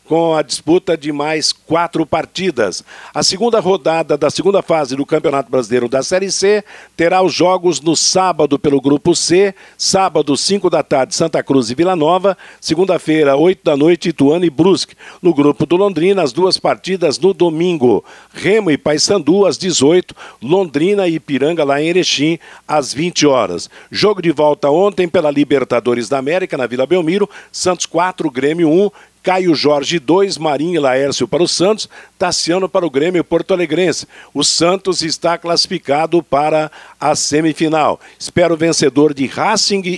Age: 50-69